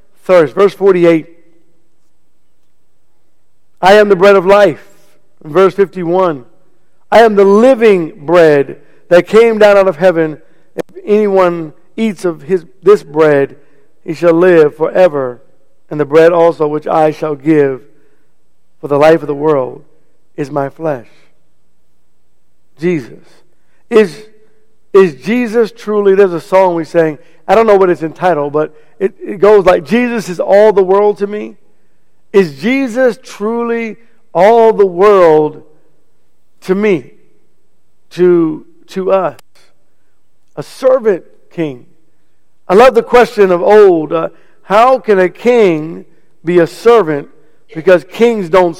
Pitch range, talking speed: 155-210 Hz, 135 wpm